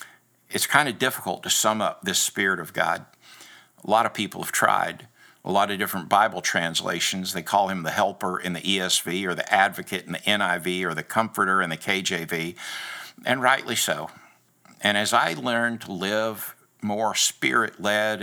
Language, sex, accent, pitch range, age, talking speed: English, male, American, 90-110 Hz, 60-79, 180 wpm